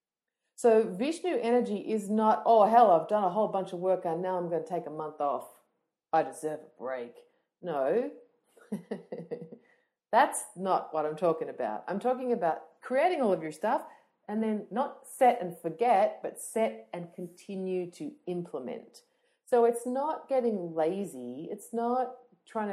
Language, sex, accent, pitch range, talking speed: English, female, Australian, 155-235 Hz, 165 wpm